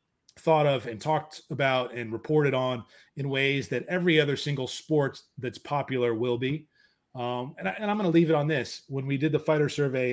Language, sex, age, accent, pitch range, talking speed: English, male, 30-49, American, 120-145 Hz, 215 wpm